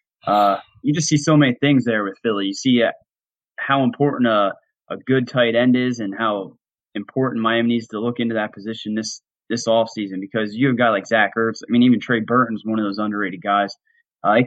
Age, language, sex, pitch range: 20-39, English, male, 110-125 Hz